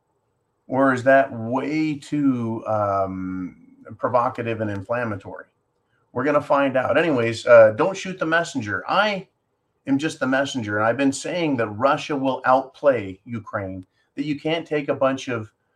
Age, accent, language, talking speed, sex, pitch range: 30-49, American, English, 150 wpm, male, 110-135 Hz